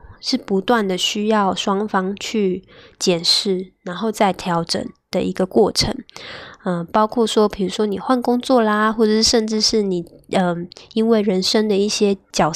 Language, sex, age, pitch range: Chinese, female, 10-29, 185-225 Hz